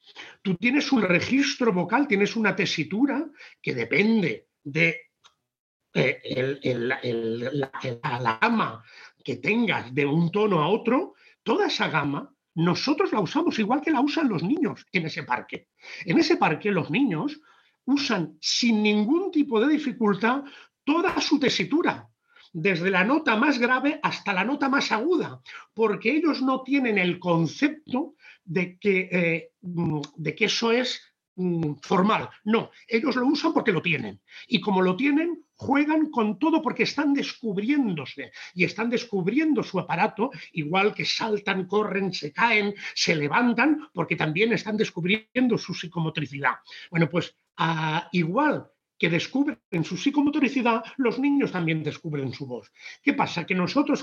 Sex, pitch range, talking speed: male, 170-265 Hz, 140 wpm